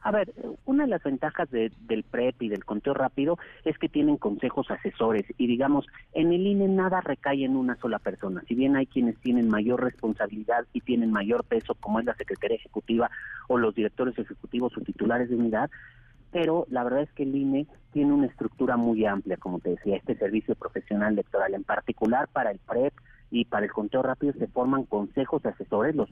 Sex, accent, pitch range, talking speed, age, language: male, Mexican, 115-150 Hz, 200 wpm, 40-59, Spanish